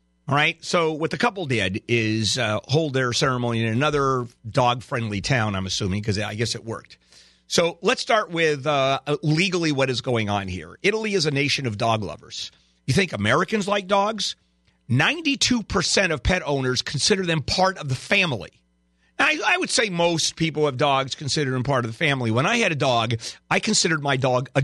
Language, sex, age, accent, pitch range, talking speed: English, male, 40-59, American, 105-170 Hz, 195 wpm